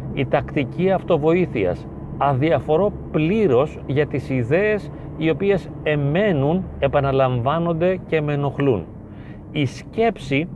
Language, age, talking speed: Greek, 40-59, 95 wpm